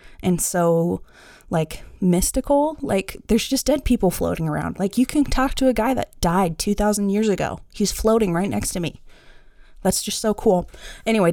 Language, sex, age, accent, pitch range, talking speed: English, female, 20-39, American, 185-255 Hz, 180 wpm